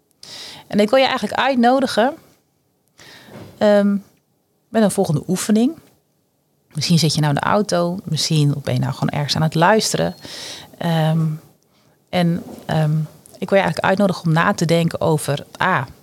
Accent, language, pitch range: Dutch, Dutch, 160-210 Hz